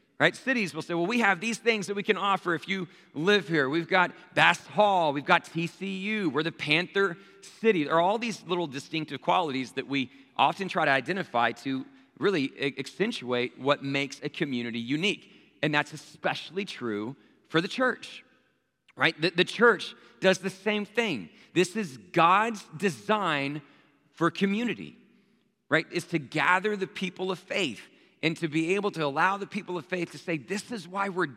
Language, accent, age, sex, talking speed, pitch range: English, American, 40-59, male, 180 wpm, 140-195 Hz